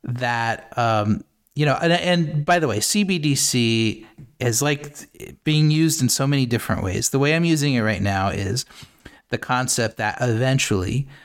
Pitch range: 105-135 Hz